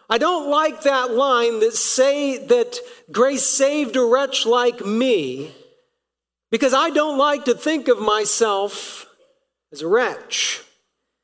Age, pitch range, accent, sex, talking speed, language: 50-69, 230-305 Hz, American, male, 135 wpm, English